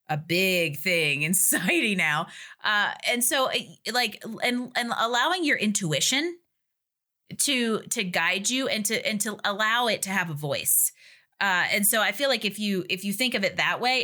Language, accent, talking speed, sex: English, American, 190 wpm, female